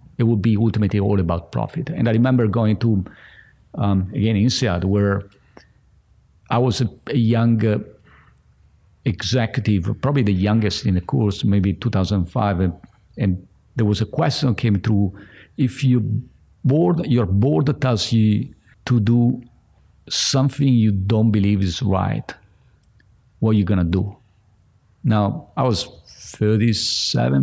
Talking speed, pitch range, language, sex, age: 135 wpm, 100-120 Hz, English, male, 50-69